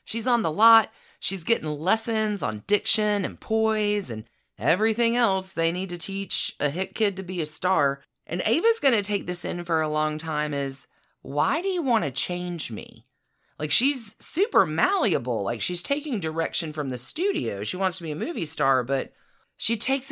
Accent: American